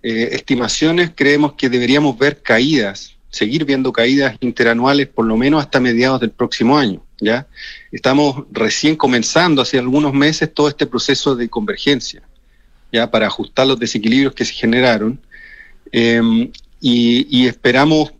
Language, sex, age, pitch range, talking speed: Spanish, male, 40-59, 115-145 Hz, 140 wpm